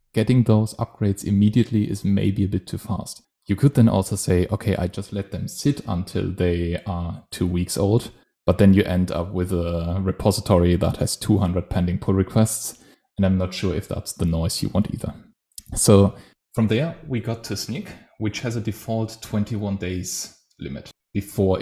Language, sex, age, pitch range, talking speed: English, male, 20-39, 95-110 Hz, 185 wpm